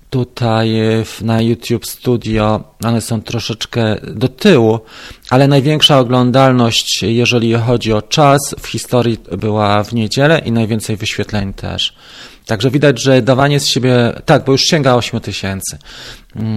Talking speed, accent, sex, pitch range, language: 140 wpm, native, male, 110-140 Hz, Polish